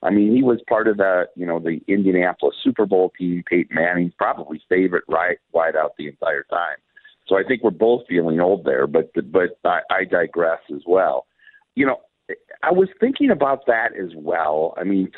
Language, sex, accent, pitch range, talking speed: English, male, American, 90-115 Hz, 200 wpm